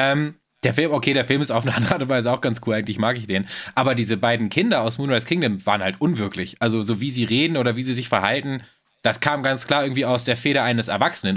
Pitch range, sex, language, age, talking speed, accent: 115-135 Hz, male, German, 20-39, 250 wpm, German